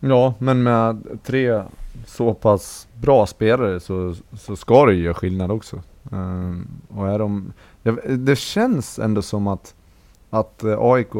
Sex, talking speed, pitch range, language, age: male, 140 wpm, 95-115 Hz, Swedish, 20-39